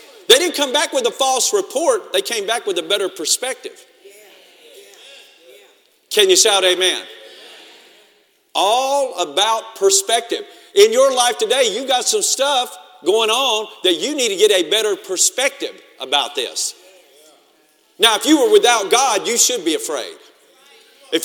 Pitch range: 295-435 Hz